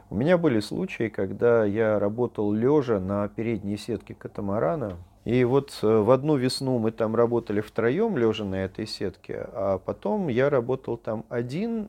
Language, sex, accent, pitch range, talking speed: Russian, male, native, 100-120 Hz, 155 wpm